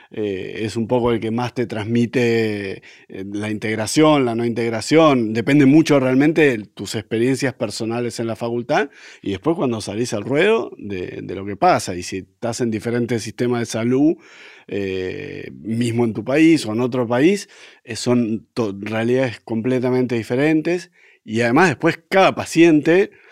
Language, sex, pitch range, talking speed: Spanish, male, 110-135 Hz, 160 wpm